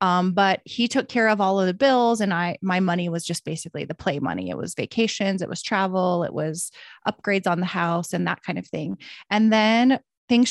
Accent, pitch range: American, 180-215 Hz